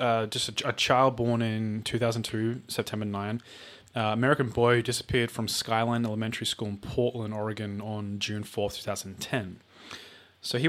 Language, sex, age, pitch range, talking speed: English, male, 20-39, 105-120 Hz, 155 wpm